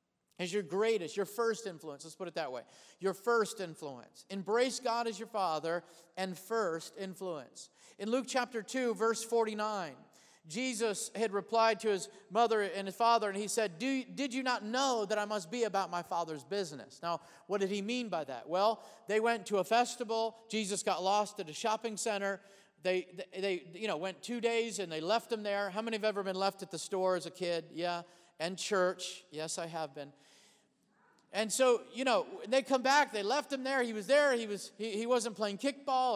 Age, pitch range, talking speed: 40-59, 195-250 Hz, 205 wpm